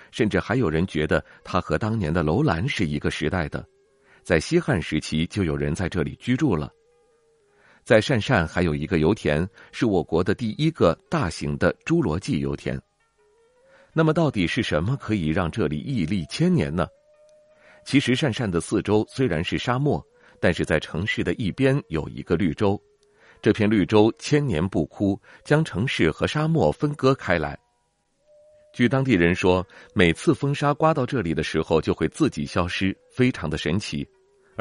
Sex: male